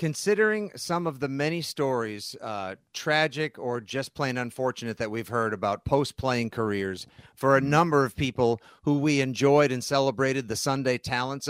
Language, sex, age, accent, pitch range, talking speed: English, male, 40-59, American, 125-155 Hz, 160 wpm